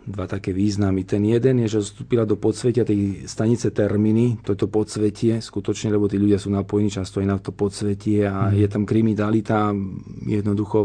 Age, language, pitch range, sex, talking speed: 40-59, Slovak, 100-120 Hz, male, 170 wpm